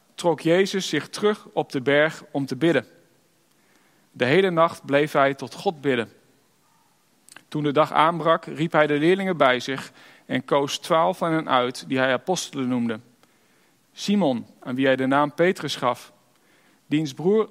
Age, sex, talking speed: 40-59, male, 165 wpm